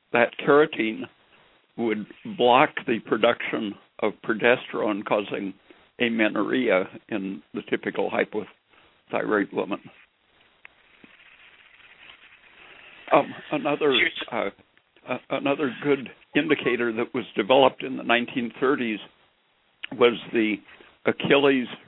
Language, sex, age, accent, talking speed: English, male, 60-79, American, 85 wpm